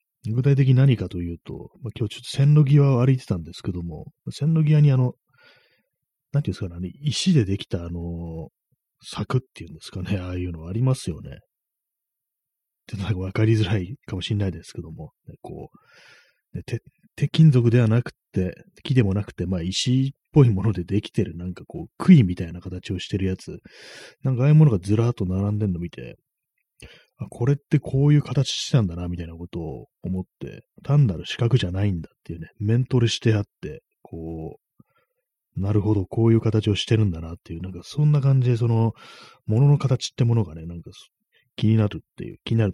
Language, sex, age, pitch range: Japanese, male, 30-49, 90-130 Hz